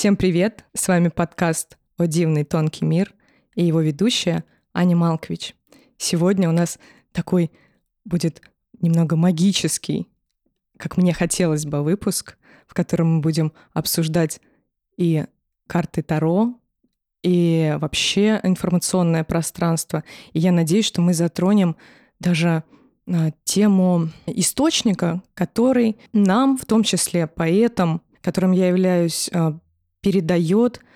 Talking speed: 110 wpm